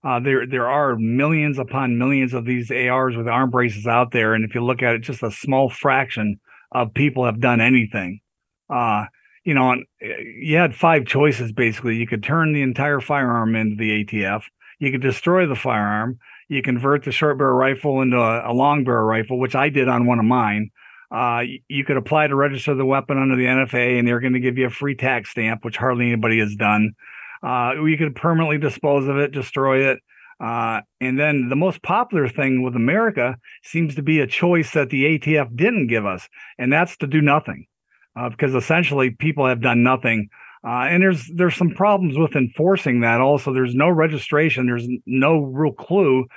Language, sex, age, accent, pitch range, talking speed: English, male, 40-59, American, 125-150 Hz, 200 wpm